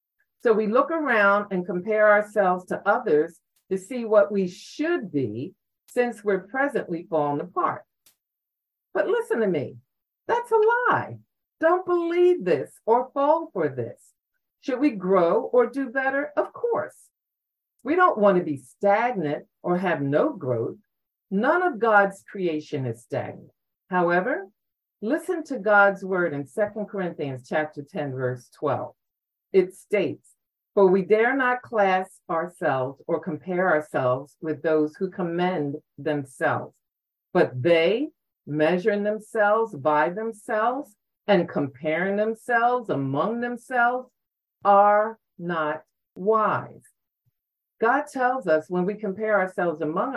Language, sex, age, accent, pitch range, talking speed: English, female, 50-69, American, 165-235 Hz, 130 wpm